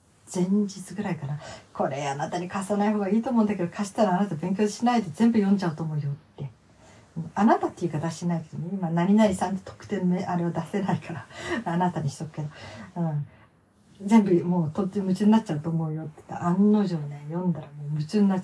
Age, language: 50-69, Japanese